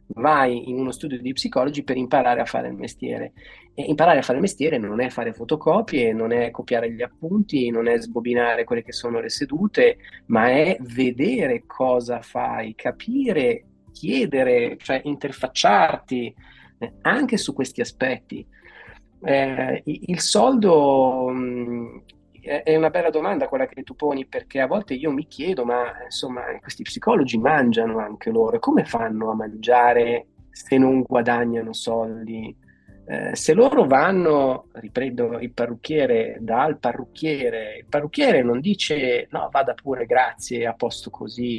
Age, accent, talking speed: 30-49, native, 145 wpm